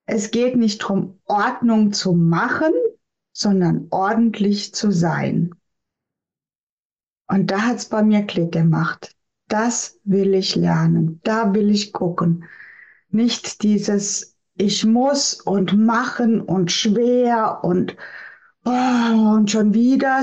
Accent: German